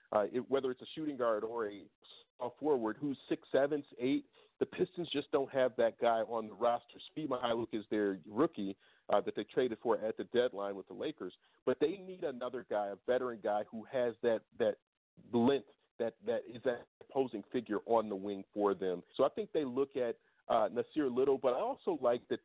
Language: English